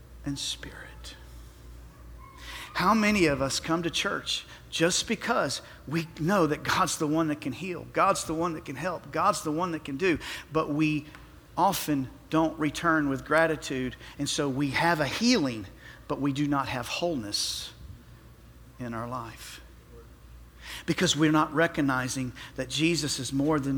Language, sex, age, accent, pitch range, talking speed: English, male, 50-69, American, 110-160 Hz, 160 wpm